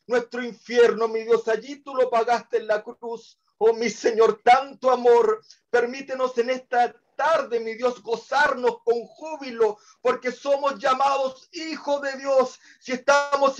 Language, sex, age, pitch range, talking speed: Spanish, male, 50-69, 240-275 Hz, 145 wpm